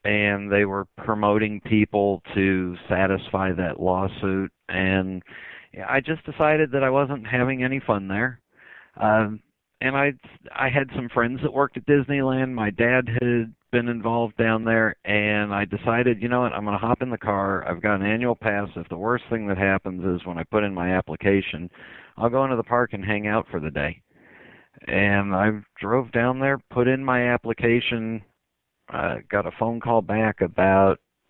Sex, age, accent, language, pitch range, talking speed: male, 50-69, American, English, 95-120 Hz, 185 wpm